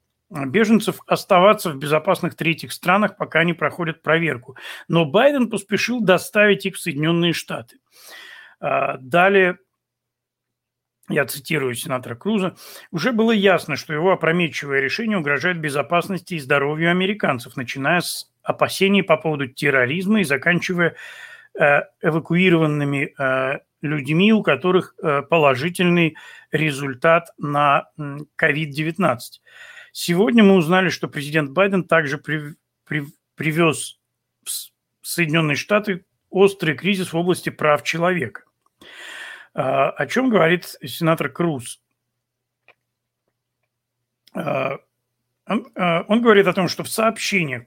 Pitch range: 140-185 Hz